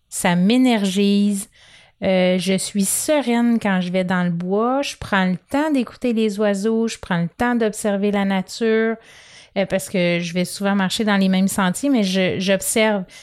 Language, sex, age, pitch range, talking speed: French, female, 30-49, 190-225 Hz, 180 wpm